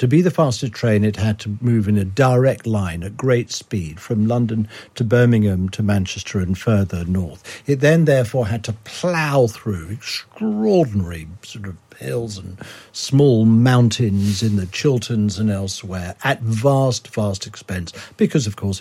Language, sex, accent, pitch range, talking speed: English, male, British, 100-125 Hz, 165 wpm